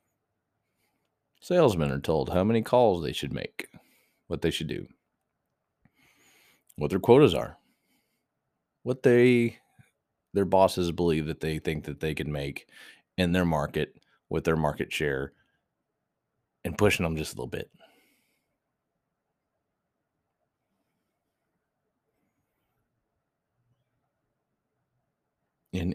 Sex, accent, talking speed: male, American, 100 wpm